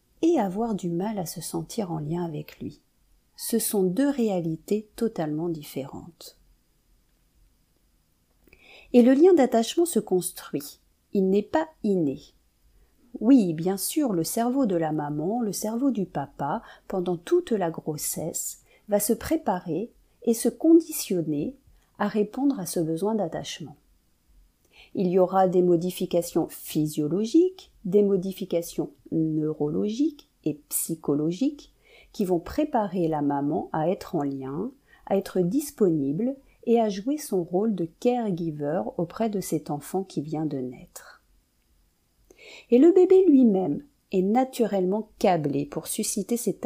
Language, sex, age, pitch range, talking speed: French, female, 40-59, 165-235 Hz, 130 wpm